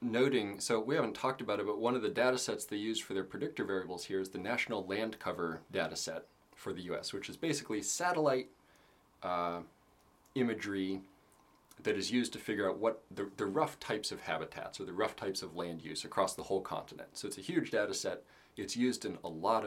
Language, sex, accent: English, male, American